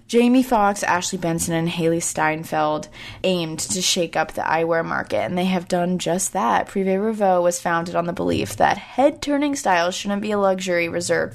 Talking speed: 185 wpm